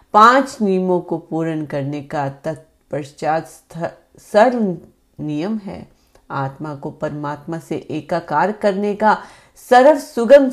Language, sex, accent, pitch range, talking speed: Hindi, female, native, 150-200 Hz, 110 wpm